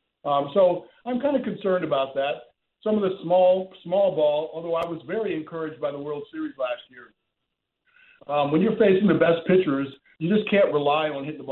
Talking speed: 200 wpm